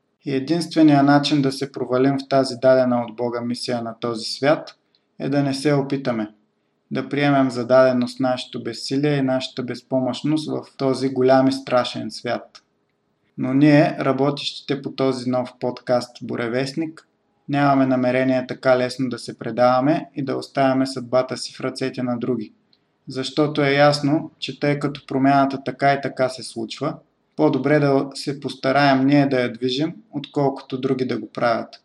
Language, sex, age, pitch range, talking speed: Bulgarian, male, 20-39, 125-145 Hz, 155 wpm